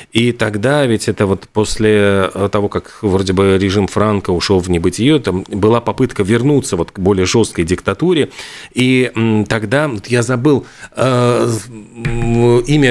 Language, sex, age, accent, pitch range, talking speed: Russian, male, 40-59, native, 105-130 Hz, 130 wpm